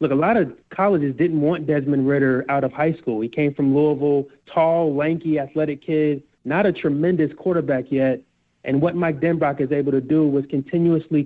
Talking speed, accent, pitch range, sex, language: 190 wpm, American, 140-170 Hz, male, English